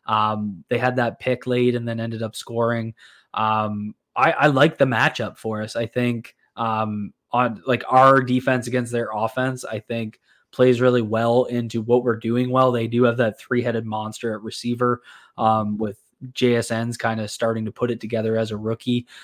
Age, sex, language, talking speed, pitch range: 20-39, male, English, 190 wpm, 110-125 Hz